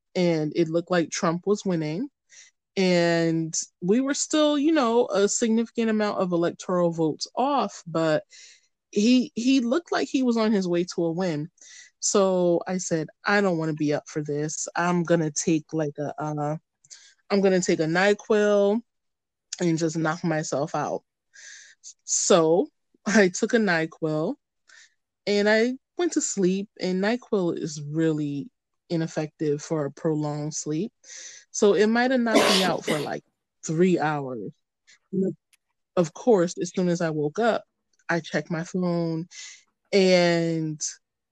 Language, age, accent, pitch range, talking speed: English, 20-39, American, 160-205 Hz, 150 wpm